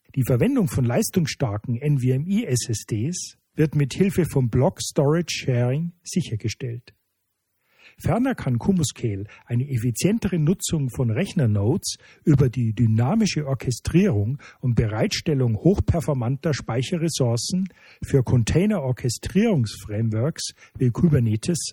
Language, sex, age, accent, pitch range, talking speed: German, male, 40-59, German, 115-170 Hz, 85 wpm